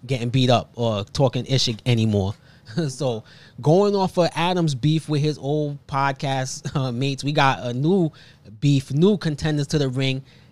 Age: 20-39